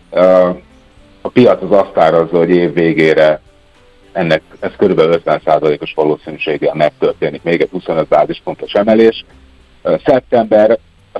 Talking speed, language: 115 wpm, Hungarian